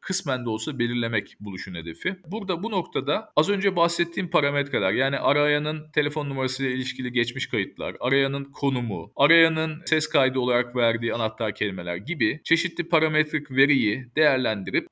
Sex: male